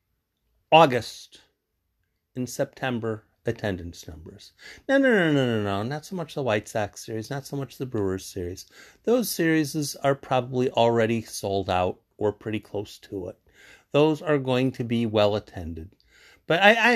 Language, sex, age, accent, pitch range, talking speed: English, male, 50-69, American, 100-145 Hz, 165 wpm